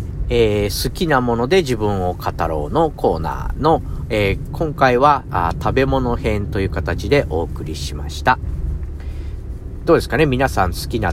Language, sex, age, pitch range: Japanese, male, 50-69, 85-120 Hz